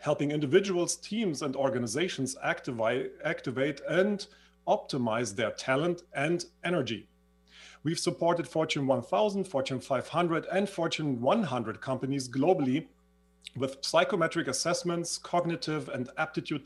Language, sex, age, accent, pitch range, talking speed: English, male, 40-59, German, 130-175 Hz, 105 wpm